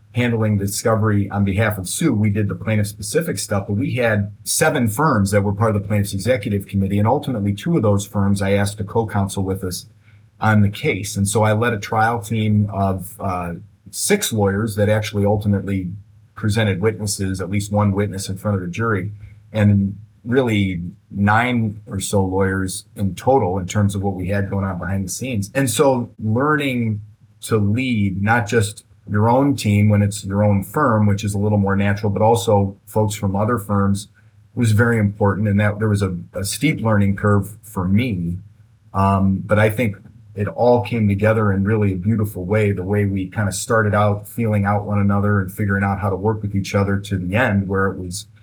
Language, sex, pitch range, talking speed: English, male, 100-110 Hz, 205 wpm